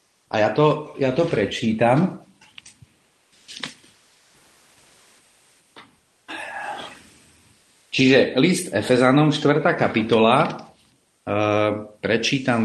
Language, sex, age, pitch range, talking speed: Slovak, male, 50-69, 110-150 Hz, 60 wpm